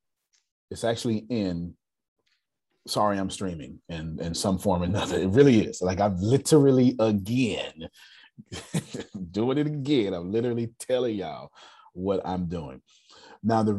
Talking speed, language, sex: 140 wpm, English, male